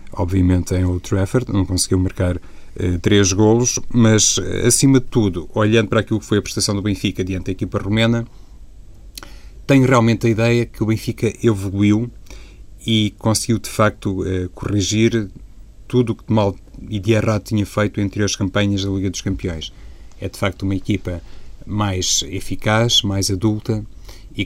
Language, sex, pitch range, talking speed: Portuguese, male, 95-110 Hz, 170 wpm